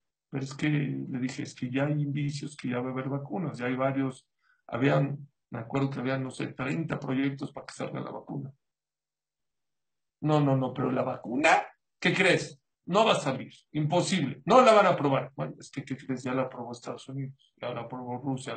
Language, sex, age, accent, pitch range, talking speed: English, male, 50-69, Mexican, 135-165 Hz, 205 wpm